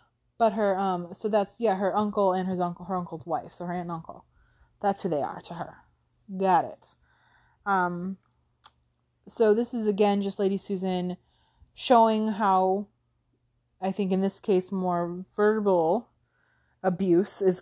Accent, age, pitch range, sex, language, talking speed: American, 20-39, 180-220 Hz, female, English, 150 wpm